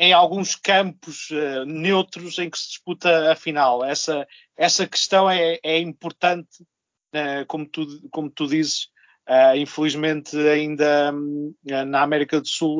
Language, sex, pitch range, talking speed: Portuguese, male, 140-180 Hz, 120 wpm